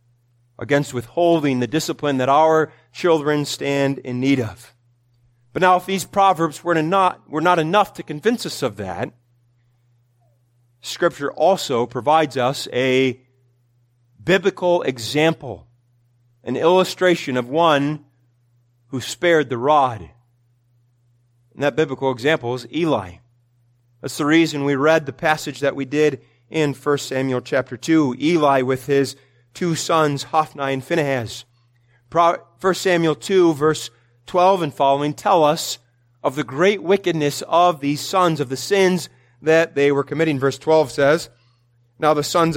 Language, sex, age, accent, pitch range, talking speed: English, male, 30-49, American, 120-165 Hz, 140 wpm